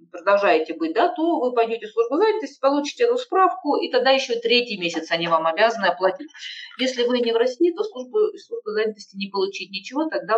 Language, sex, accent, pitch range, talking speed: Russian, female, native, 205-320 Hz, 190 wpm